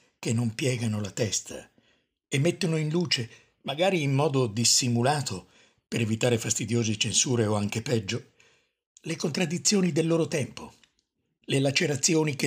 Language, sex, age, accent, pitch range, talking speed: Italian, male, 60-79, native, 120-160 Hz, 135 wpm